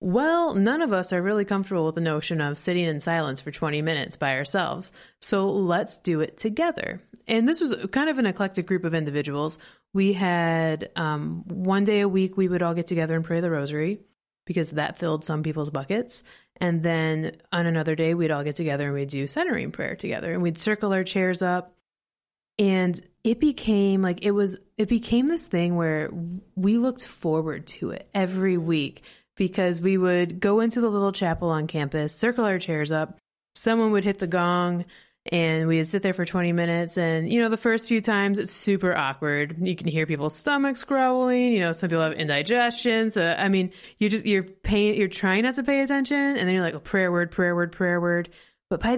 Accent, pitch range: American, 165-210 Hz